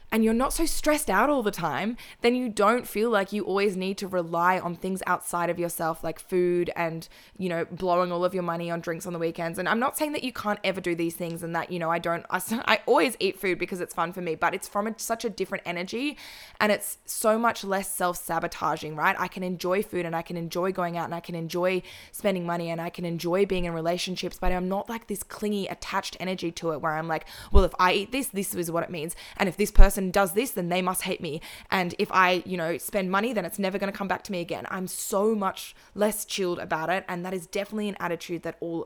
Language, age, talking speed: English, 20-39, 260 wpm